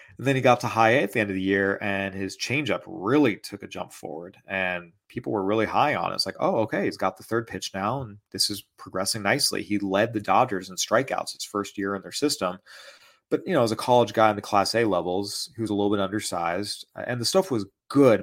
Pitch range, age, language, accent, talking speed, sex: 95-110 Hz, 30-49, English, American, 255 wpm, male